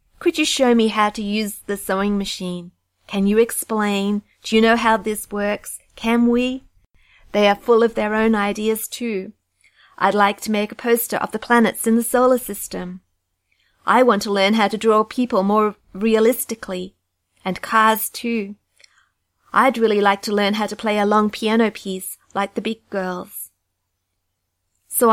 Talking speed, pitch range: 170 wpm, 195-230 Hz